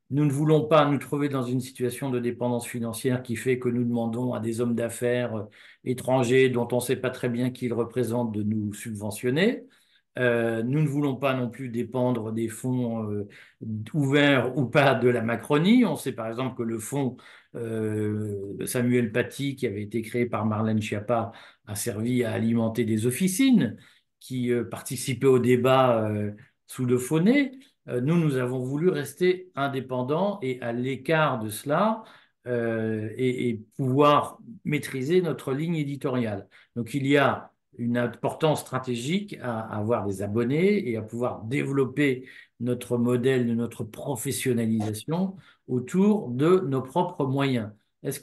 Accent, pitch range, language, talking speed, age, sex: French, 120-145 Hz, French, 160 wpm, 50-69, male